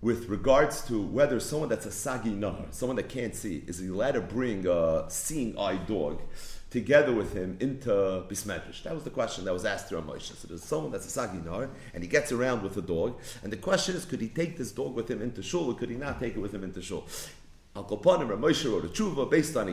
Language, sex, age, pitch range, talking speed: English, male, 40-59, 115-165 Hz, 245 wpm